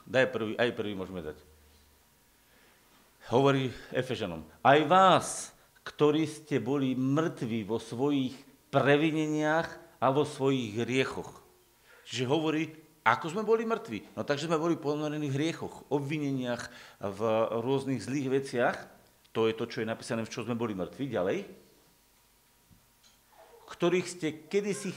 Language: Slovak